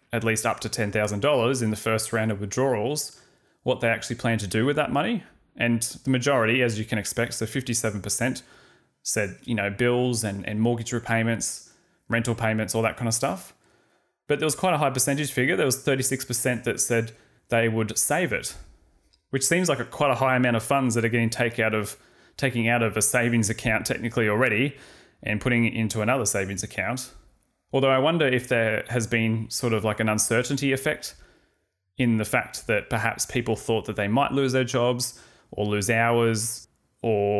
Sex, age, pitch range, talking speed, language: male, 20-39, 110-125 Hz, 200 wpm, English